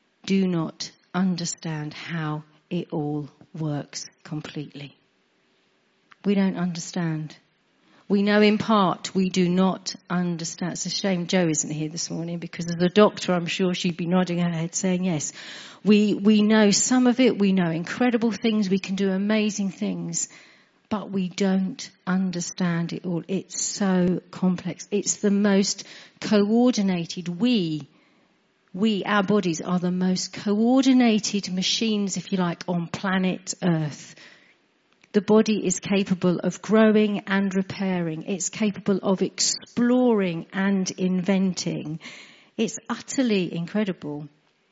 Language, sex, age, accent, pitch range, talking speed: English, female, 50-69, British, 175-210 Hz, 135 wpm